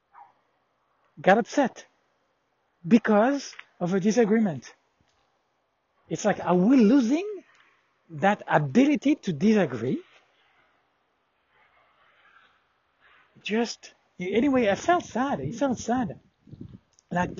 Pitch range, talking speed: 170-235 Hz, 85 wpm